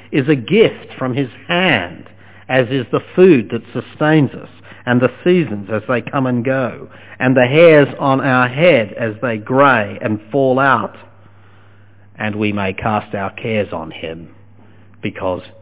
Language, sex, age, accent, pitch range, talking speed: English, male, 50-69, Australian, 100-130 Hz, 160 wpm